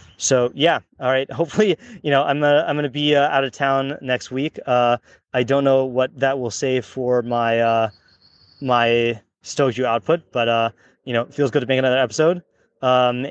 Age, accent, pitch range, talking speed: 20-39, American, 120-140 Hz, 205 wpm